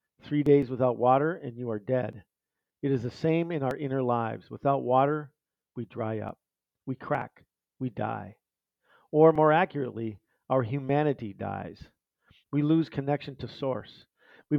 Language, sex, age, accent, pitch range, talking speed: English, male, 50-69, American, 120-145 Hz, 150 wpm